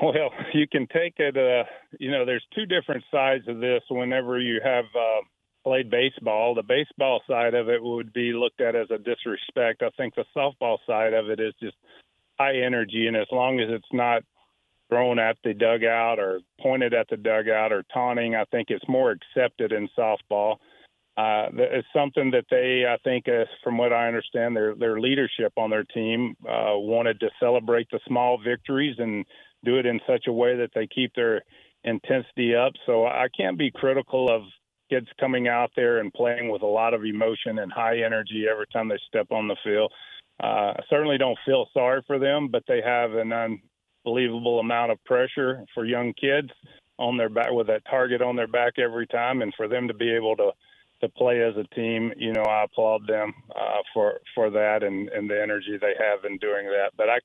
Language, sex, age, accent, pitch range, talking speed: English, male, 40-59, American, 110-130 Hz, 205 wpm